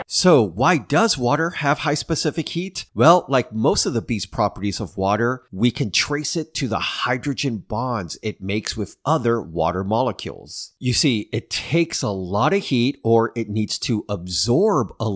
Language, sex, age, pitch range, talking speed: English, male, 40-59, 100-130 Hz, 180 wpm